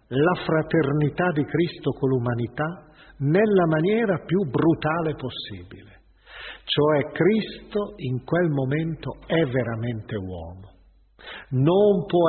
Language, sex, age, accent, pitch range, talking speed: Italian, male, 50-69, native, 120-160 Hz, 105 wpm